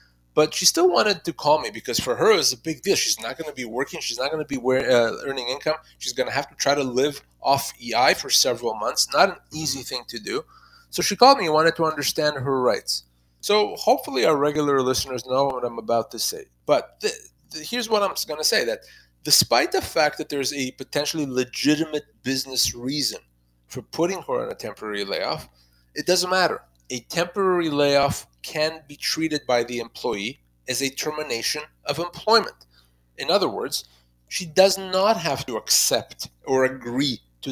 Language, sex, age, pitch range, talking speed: English, male, 30-49, 120-175 Hz, 195 wpm